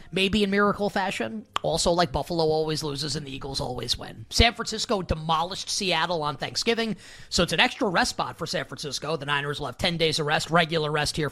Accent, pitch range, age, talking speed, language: American, 145-200 Hz, 30-49, 210 wpm, English